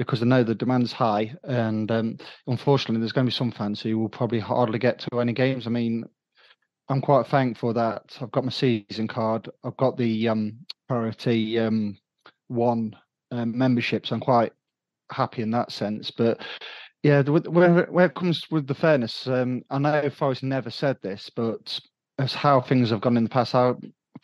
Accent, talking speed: British, 190 wpm